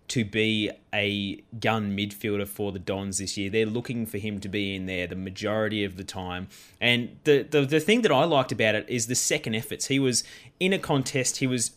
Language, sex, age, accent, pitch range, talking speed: English, male, 20-39, Australian, 110-135 Hz, 225 wpm